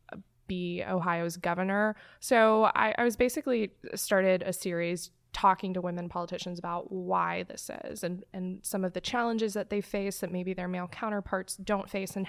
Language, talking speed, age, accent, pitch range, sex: English, 175 wpm, 20-39, American, 180-205 Hz, female